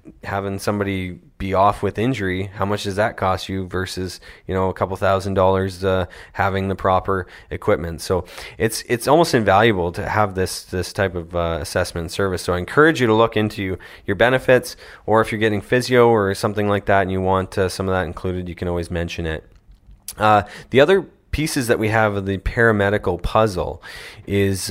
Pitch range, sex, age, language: 90-105 Hz, male, 20-39, English